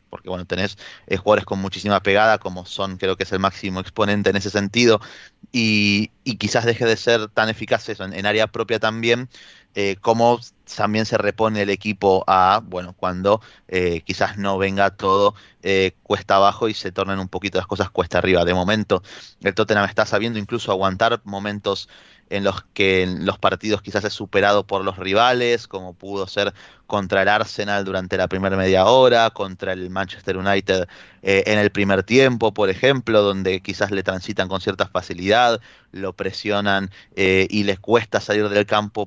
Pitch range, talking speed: 95-110 Hz, 180 wpm